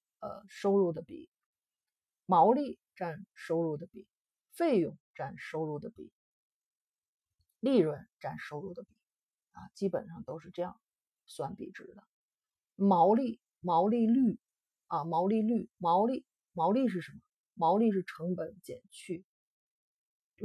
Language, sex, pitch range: Chinese, female, 160-205 Hz